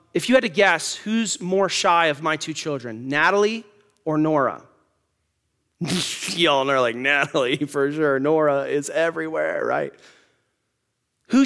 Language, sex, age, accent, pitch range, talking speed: English, male, 30-49, American, 145-205 Hz, 135 wpm